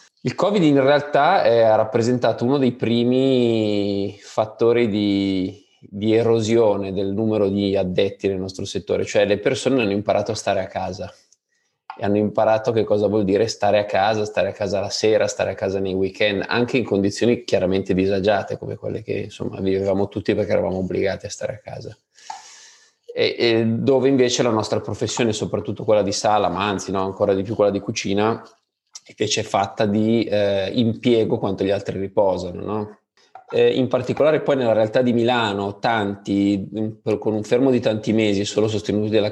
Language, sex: Italian, male